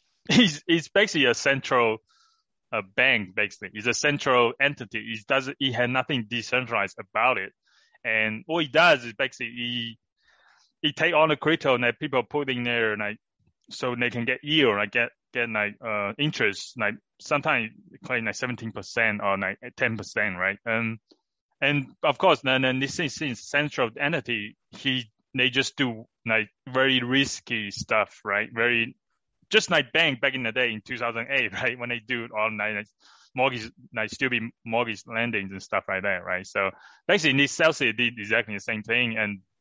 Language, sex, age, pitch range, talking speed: English, male, 20-39, 105-140 Hz, 175 wpm